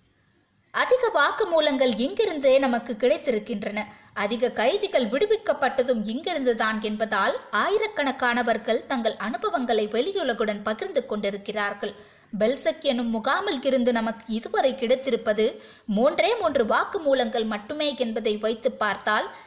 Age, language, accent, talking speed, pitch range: 20-39, Tamil, native, 100 wpm, 220-300 Hz